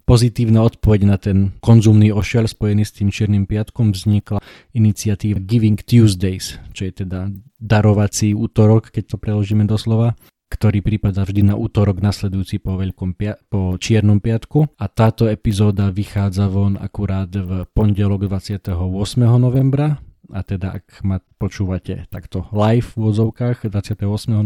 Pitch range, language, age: 95-110 Hz, Slovak, 20-39